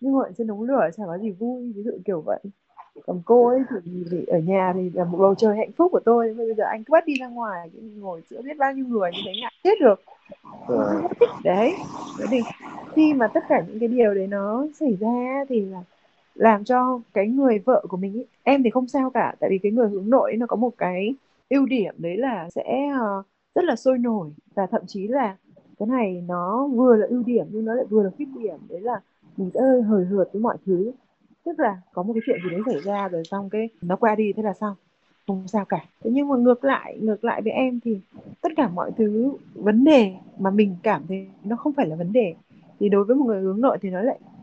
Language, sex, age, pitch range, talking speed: Vietnamese, female, 20-39, 195-260 Hz, 245 wpm